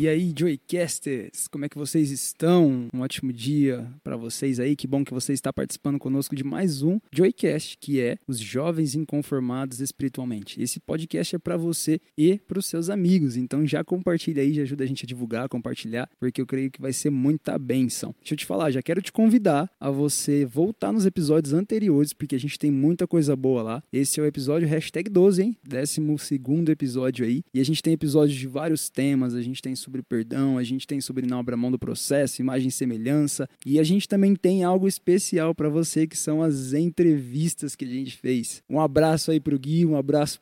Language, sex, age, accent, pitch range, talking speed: Portuguese, male, 20-39, Brazilian, 130-160 Hz, 210 wpm